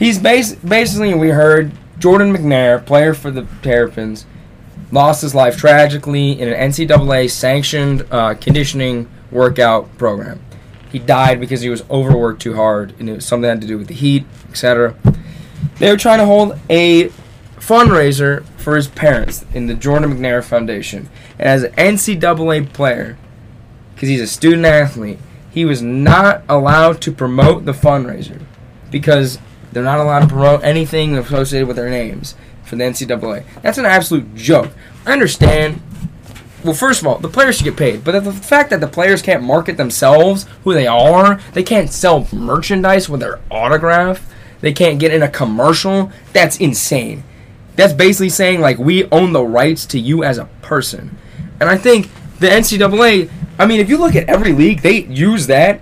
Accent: American